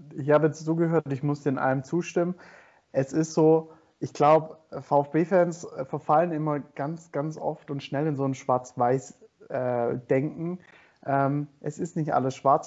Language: German